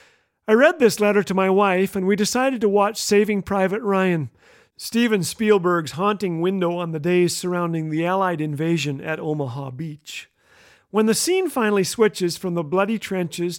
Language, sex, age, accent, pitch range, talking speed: English, male, 40-59, American, 165-205 Hz, 170 wpm